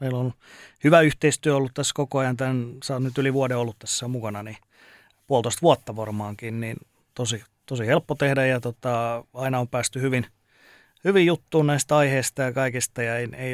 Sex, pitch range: male, 115-135 Hz